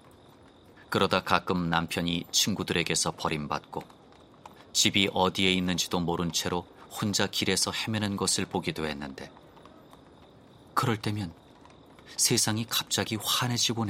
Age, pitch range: 30-49, 80-100 Hz